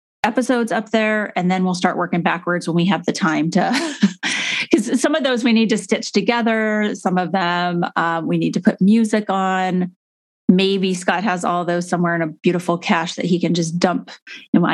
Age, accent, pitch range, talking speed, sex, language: 30-49, American, 180-230 Hz, 205 wpm, female, English